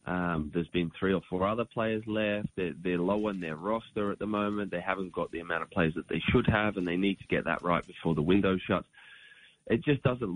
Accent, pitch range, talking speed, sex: Australian, 85-95 Hz, 250 wpm, male